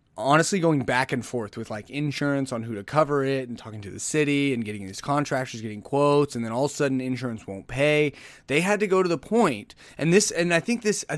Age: 30-49